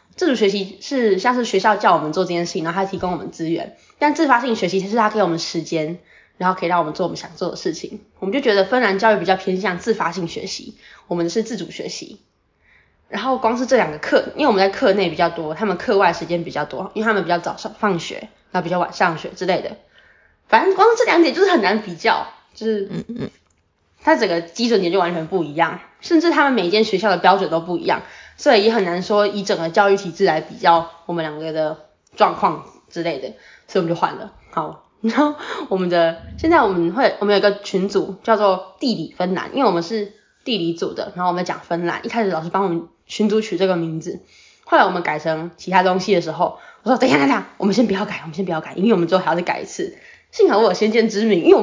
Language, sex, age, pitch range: Chinese, female, 20-39, 175-225 Hz